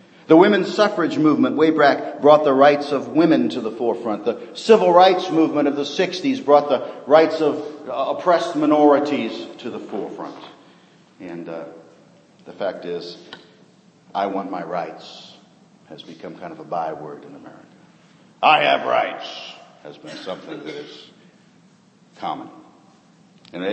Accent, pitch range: American, 115-195 Hz